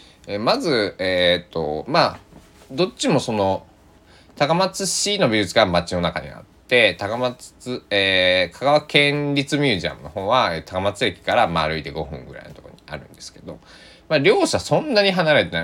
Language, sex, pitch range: Japanese, male, 80-110 Hz